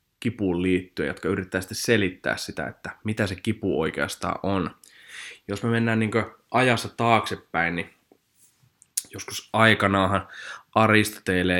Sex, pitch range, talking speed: male, 90-110 Hz, 120 wpm